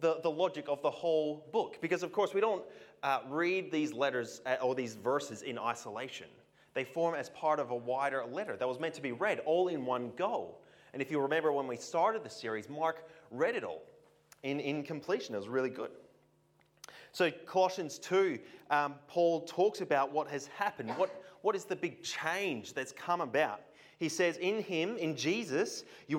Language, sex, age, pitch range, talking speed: English, male, 30-49, 140-175 Hz, 195 wpm